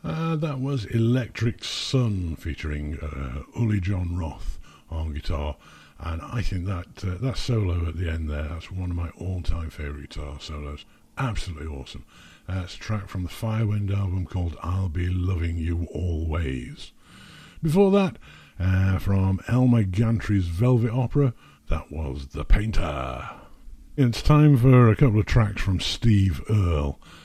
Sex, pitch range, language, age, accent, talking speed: male, 80-110 Hz, English, 60-79, British, 150 wpm